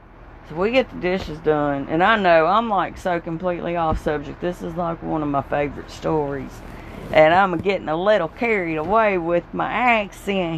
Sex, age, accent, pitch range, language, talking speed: female, 40-59, American, 175-240 Hz, English, 180 wpm